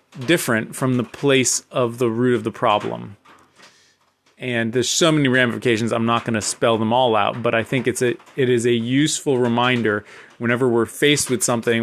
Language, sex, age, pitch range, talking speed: English, male, 20-39, 115-135 Hz, 195 wpm